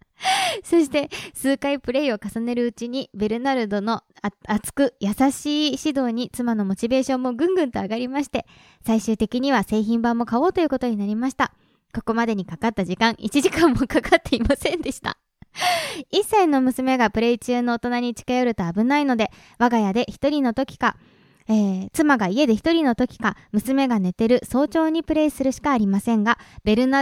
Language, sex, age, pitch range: Japanese, male, 20-39, 220-280 Hz